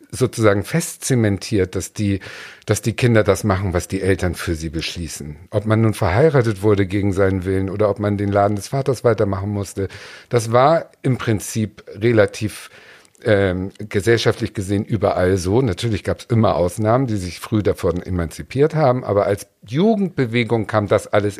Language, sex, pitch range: German, male, 100-135 Hz